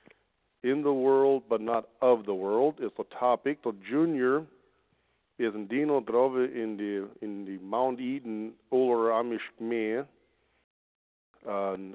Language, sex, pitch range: English, male, 105-120 Hz